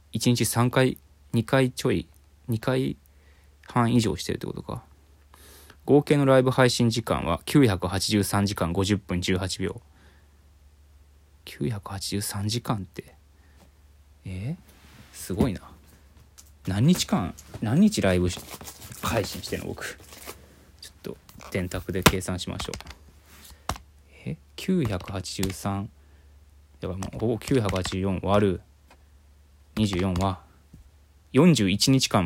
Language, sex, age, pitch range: Japanese, male, 20-39, 75-100 Hz